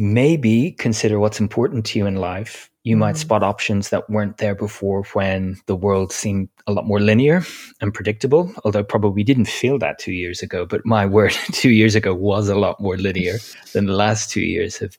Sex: male